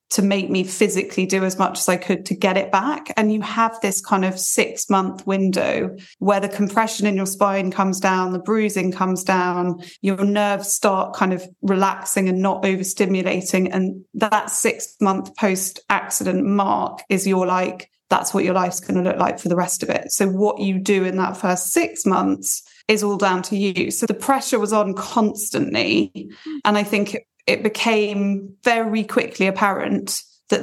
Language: English